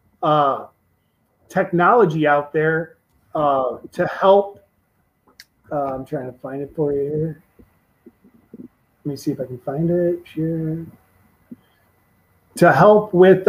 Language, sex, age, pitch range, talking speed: English, male, 30-49, 150-175 Hz, 120 wpm